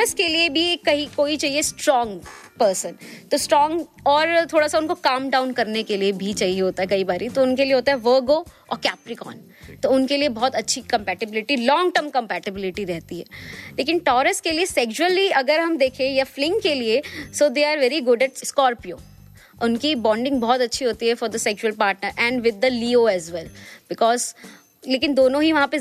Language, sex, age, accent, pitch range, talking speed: Hindi, female, 20-39, native, 235-305 Hz, 200 wpm